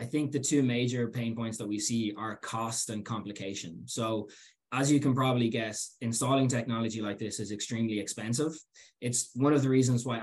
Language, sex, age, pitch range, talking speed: English, male, 20-39, 110-130 Hz, 195 wpm